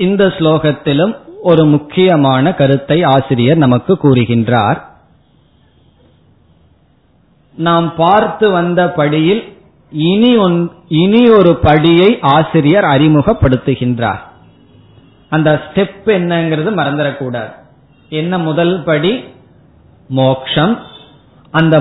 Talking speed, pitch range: 75 wpm, 135-180 Hz